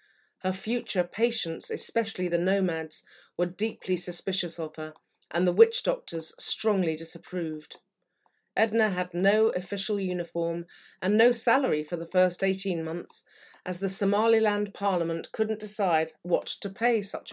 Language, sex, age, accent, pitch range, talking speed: English, female, 30-49, British, 170-205 Hz, 140 wpm